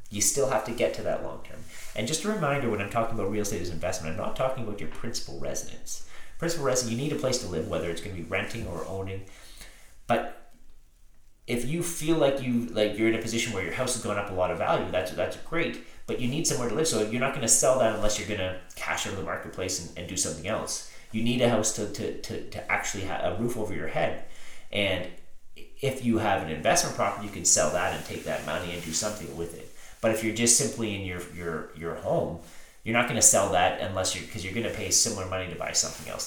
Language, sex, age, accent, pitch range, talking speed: English, male, 30-49, American, 90-115 Hz, 260 wpm